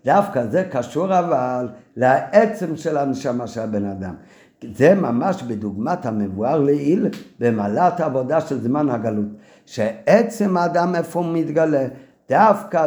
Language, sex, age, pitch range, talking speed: Hebrew, male, 50-69, 120-170 Hz, 120 wpm